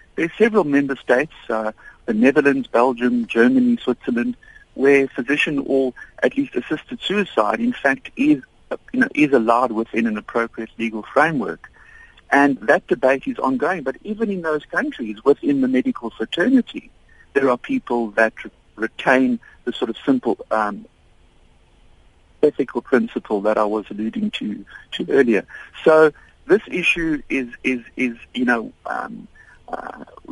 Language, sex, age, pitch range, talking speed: Malay, male, 50-69, 115-180 Hz, 145 wpm